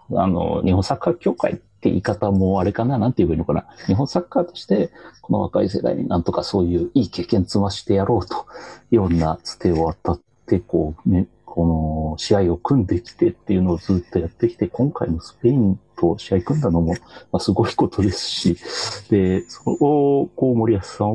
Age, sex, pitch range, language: 40-59, male, 95-150 Hz, Japanese